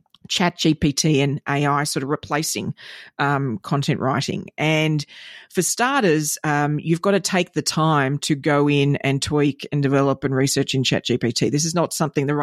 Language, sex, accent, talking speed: English, female, Australian, 180 wpm